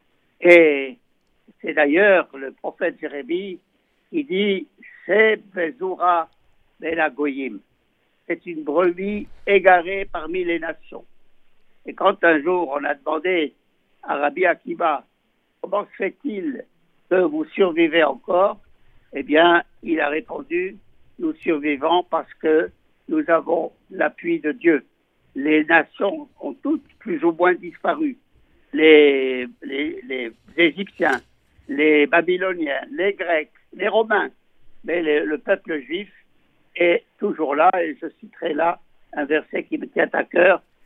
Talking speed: 125 wpm